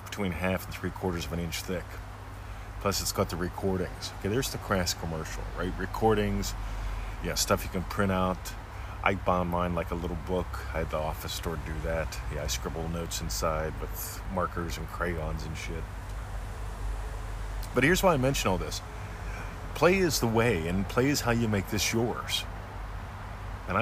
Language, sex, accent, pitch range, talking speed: English, male, American, 90-105 Hz, 180 wpm